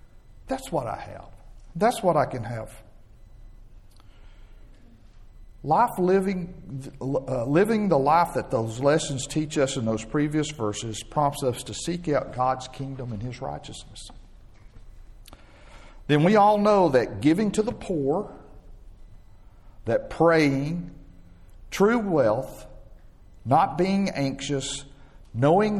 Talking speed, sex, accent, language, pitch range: 120 wpm, male, American, English, 105-150 Hz